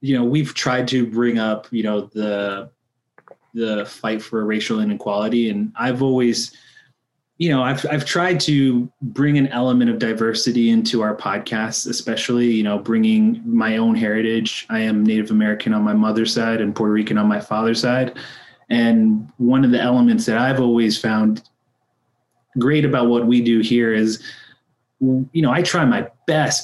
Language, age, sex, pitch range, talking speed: English, 20-39, male, 110-130 Hz, 170 wpm